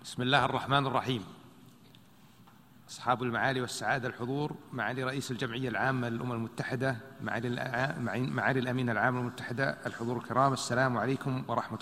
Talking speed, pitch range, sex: 115 wpm, 115-135 Hz, male